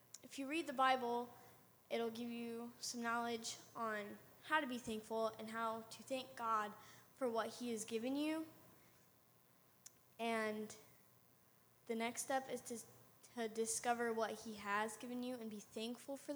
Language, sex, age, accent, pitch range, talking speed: English, female, 10-29, American, 225-280 Hz, 160 wpm